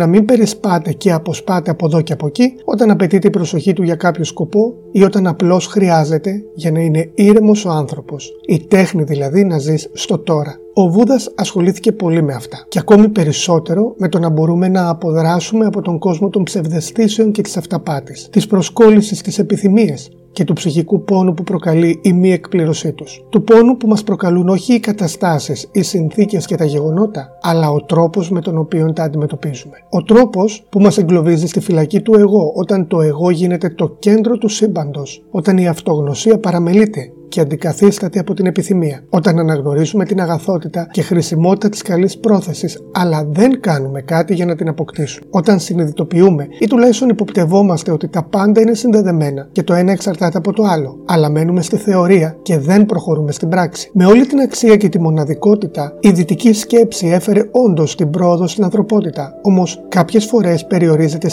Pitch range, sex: 165-205 Hz, male